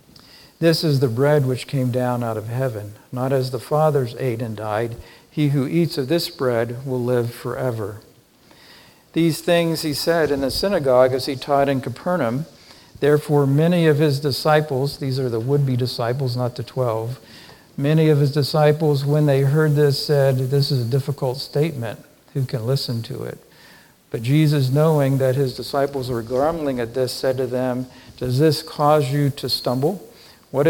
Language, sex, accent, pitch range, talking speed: English, male, American, 120-145 Hz, 175 wpm